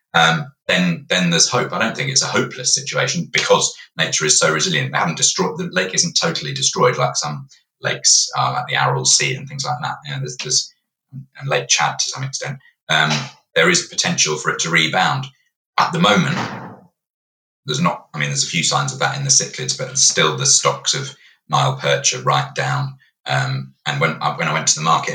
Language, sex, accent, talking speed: English, male, British, 215 wpm